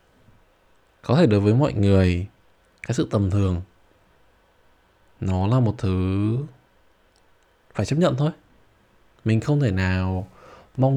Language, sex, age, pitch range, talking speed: Vietnamese, male, 20-39, 95-125 Hz, 125 wpm